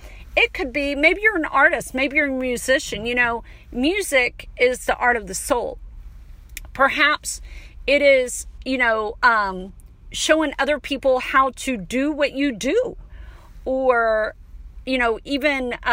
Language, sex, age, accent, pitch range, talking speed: English, female, 40-59, American, 220-275 Hz, 145 wpm